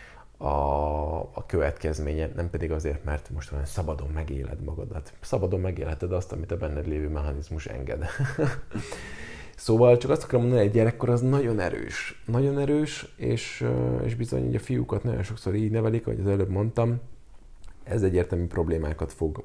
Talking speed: 155 wpm